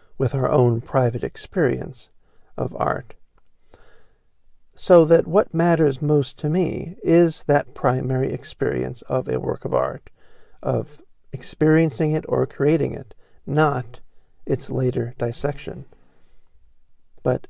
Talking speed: 115 wpm